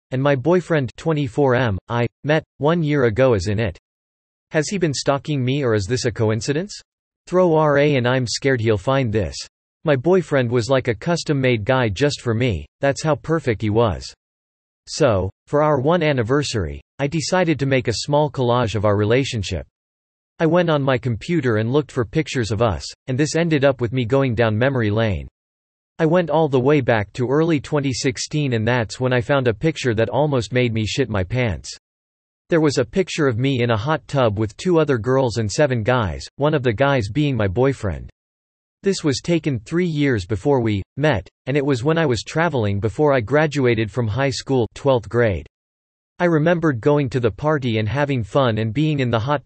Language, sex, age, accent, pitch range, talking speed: English, male, 40-59, American, 110-145 Hz, 200 wpm